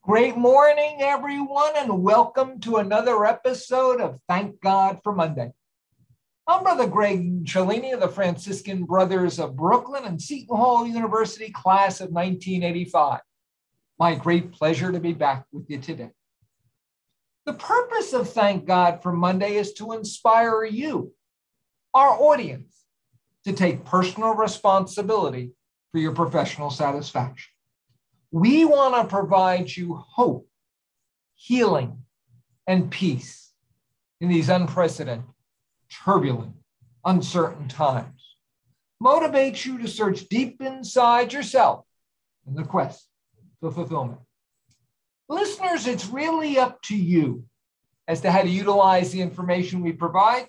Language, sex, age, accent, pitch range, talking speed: English, male, 50-69, American, 155-235 Hz, 120 wpm